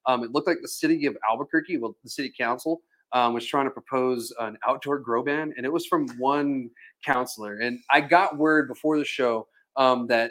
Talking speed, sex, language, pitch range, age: 210 wpm, male, English, 125-155 Hz, 30-49